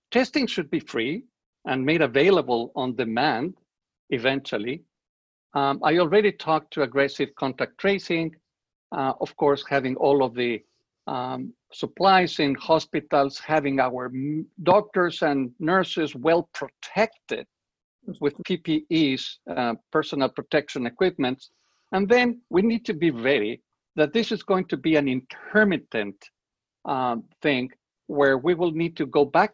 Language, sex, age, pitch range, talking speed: English, male, 50-69, 140-185 Hz, 130 wpm